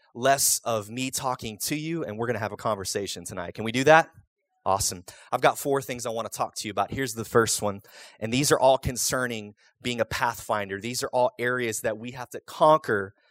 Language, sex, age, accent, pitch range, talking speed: English, male, 30-49, American, 110-155 Hz, 230 wpm